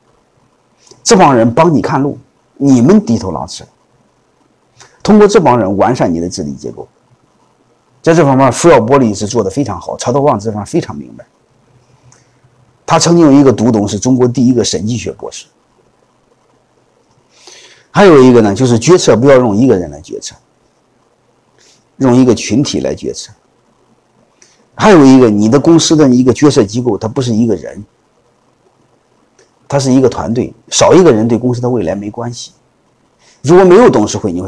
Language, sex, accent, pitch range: Chinese, male, native, 110-145 Hz